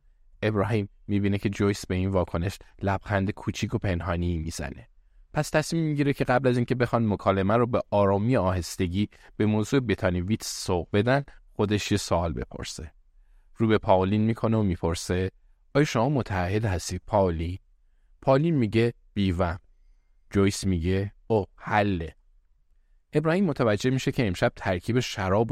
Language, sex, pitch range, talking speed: Persian, male, 90-120 Hz, 140 wpm